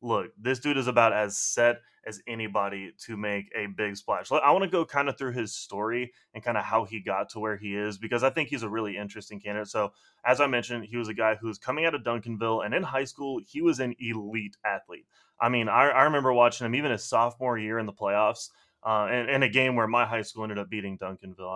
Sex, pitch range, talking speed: male, 110-130 Hz, 255 wpm